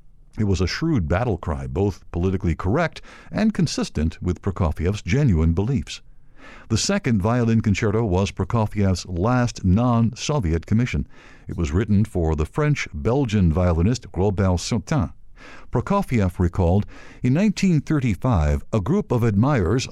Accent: American